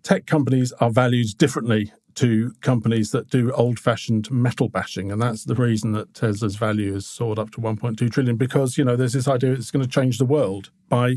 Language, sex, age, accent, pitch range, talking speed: English, male, 50-69, British, 115-145 Hz, 205 wpm